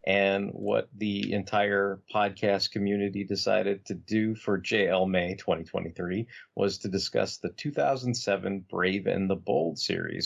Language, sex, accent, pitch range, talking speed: English, male, American, 90-125 Hz, 135 wpm